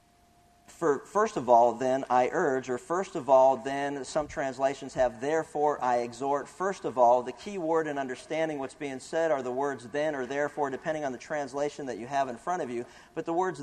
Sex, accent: male, American